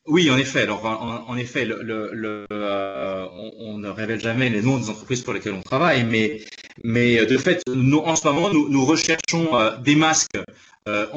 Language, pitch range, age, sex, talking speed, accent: French, 110-140 Hz, 30-49, male, 210 wpm, French